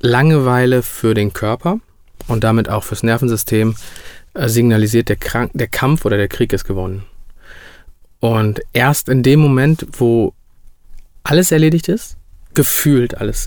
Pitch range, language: 110-140 Hz, German